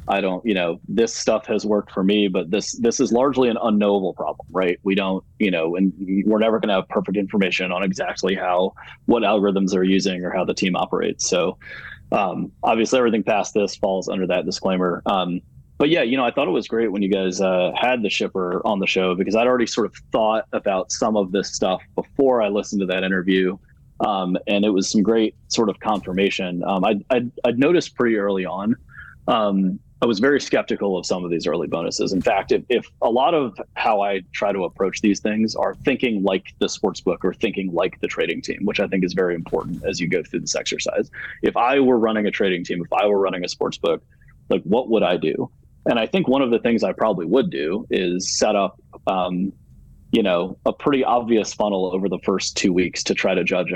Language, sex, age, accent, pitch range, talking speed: English, male, 30-49, American, 95-105 Hz, 230 wpm